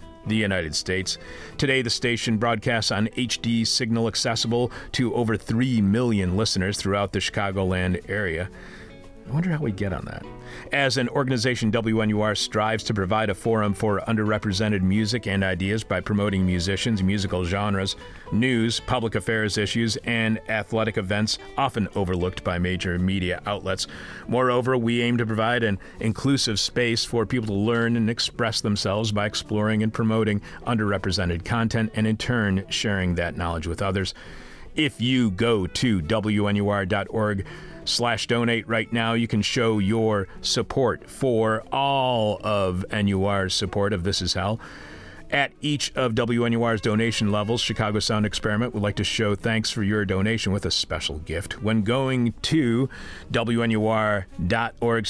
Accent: American